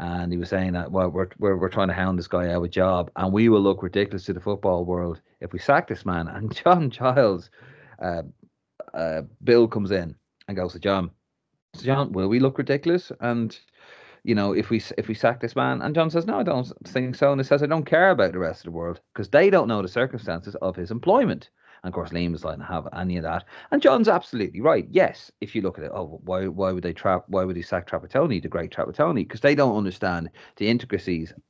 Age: 30-49